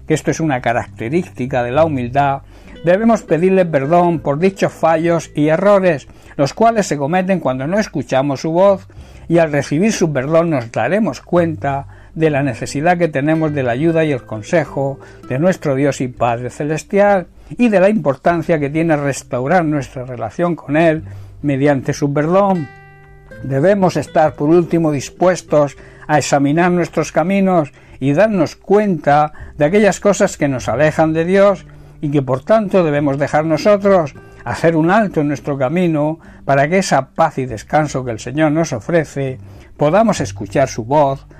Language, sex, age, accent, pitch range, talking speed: Spanish, male, 60-79, Spanish, 135-170 Hz, 160 wpm